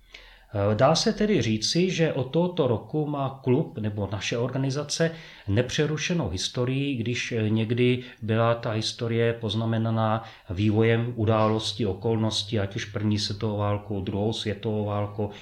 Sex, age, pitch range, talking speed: male, 30-49, 110-145 Hz, 125 wpm